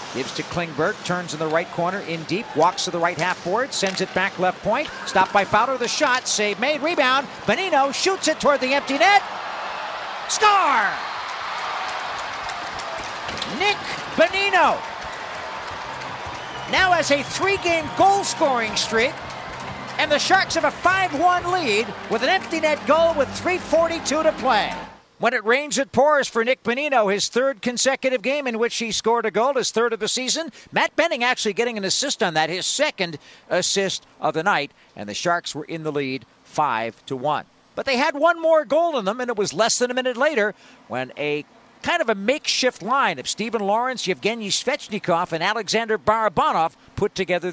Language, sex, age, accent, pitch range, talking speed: English, male, 50-69, American, 190-295 Hz, 175 wpm